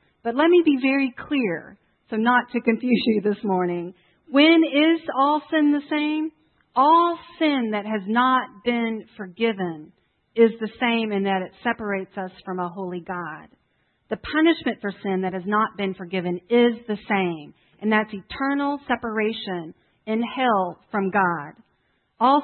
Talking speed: 160 wpm